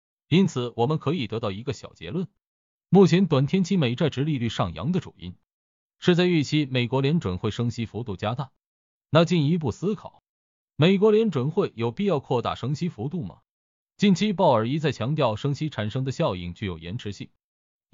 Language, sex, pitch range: Chinese, male, 115-175 Hz